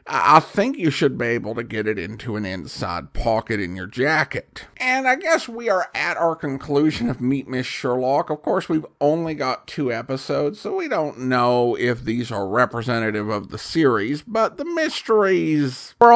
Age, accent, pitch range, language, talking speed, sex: 50-69, American, 120-165 Hz, English, 185 wpm, male